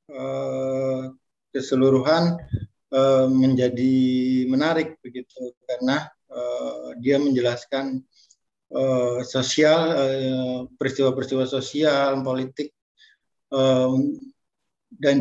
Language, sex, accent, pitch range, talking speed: Indonesian, male, native, 130-155 Hz, 45 wpm